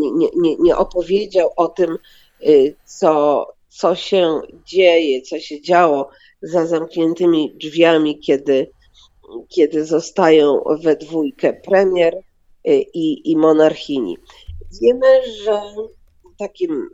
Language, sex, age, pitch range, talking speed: Polish, female, 40-59, 155-230 Hz, 100 wpm